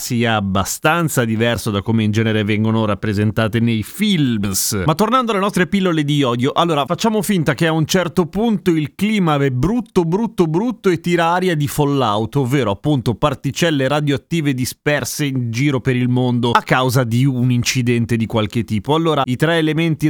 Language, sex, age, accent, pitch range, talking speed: Italian, male, 30-49, native, 120-170 Hz, 175 wpm